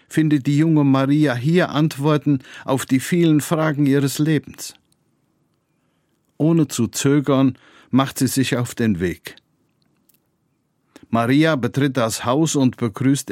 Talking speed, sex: 120 wpm, male